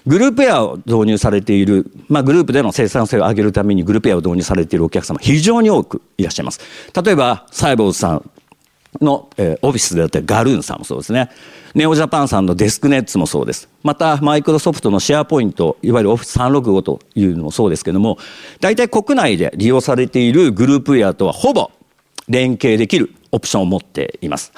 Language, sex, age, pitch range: Japanese, male, 50-69, 95-135 Hz